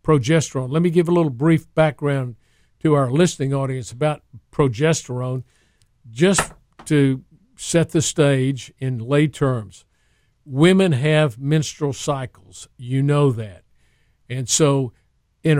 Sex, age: male, 50-69